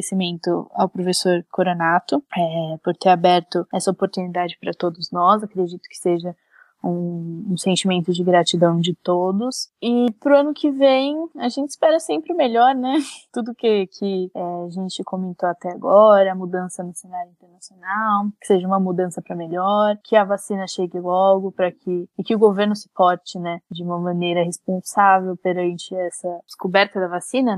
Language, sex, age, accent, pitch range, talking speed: Portuguese, female, 10-29, Brazilian, 180-205 Hz, 170 wpm